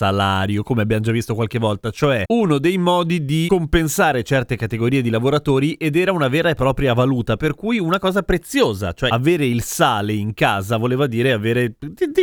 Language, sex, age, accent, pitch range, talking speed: Italian, male, 30-49, native, 115-150 Hz, 190 wpm